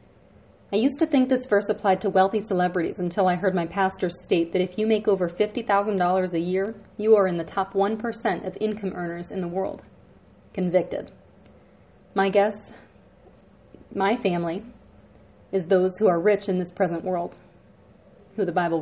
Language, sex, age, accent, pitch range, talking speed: English, female, 30-49, American, 180-210 Hz, 170 wpm